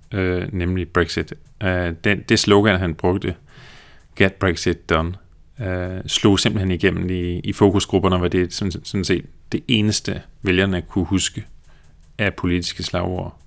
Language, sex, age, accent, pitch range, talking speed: Danish, male, 30-49, native, 85-100 Hz, 145 wpm